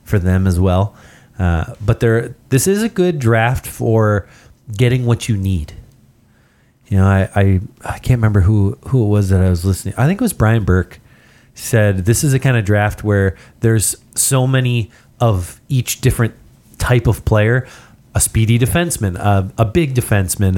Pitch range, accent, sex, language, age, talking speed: 105-125 Hz, American, male, English, 30-49, 180 wpm